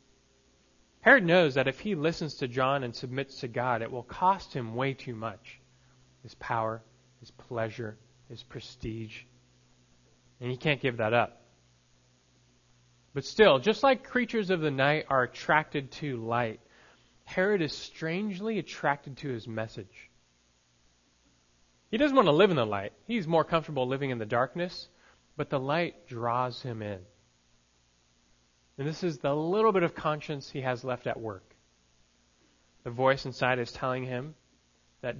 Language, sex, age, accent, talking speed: English, male, 30-49, American, 155 wpm